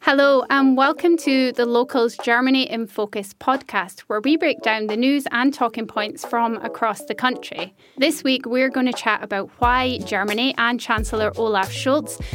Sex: female